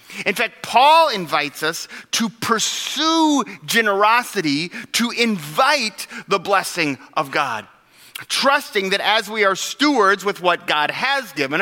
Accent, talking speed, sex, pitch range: American, 130 wpm, male, 155-210 Hz